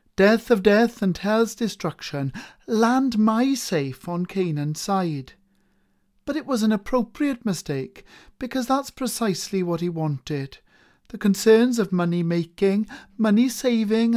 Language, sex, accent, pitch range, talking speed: English, male, British, 155-220 Hz, 125 wpm